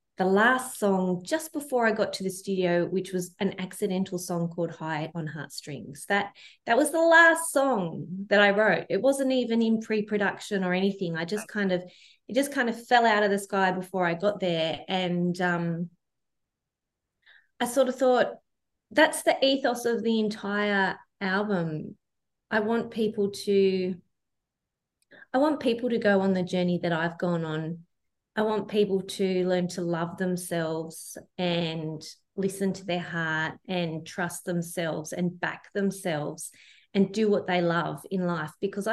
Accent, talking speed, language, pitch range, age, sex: Australian, 165 wpm, English, 180-215 Hz, 20-39, female